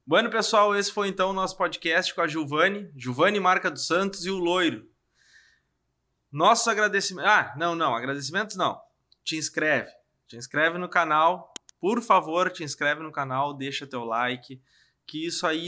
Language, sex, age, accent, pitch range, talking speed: Portuguese, male, 20-39, Brazilian, 150-185 Hz, 170 wpm